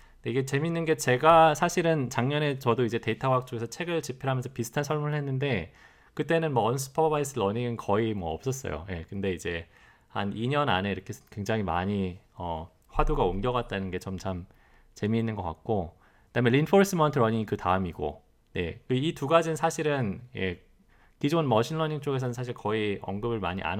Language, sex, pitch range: Korean, male, 95-140 Hz